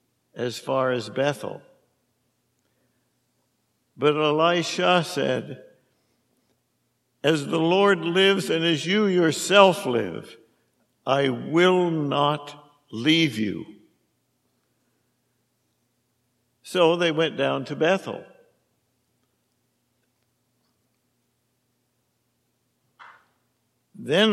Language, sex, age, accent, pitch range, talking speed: English, male, 60-79, American, 125-175 Hz, 70 wpm